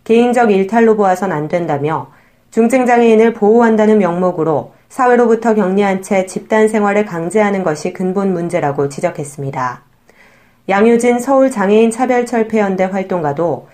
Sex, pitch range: female, 175-220 Hz